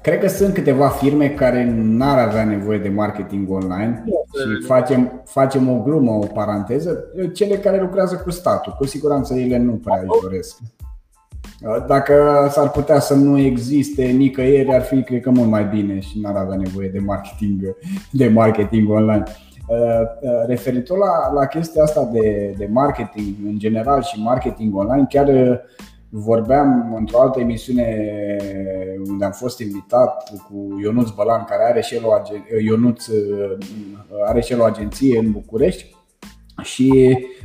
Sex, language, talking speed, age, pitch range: male, Romanian, 150 wpm, 20-39, 105-135 Hz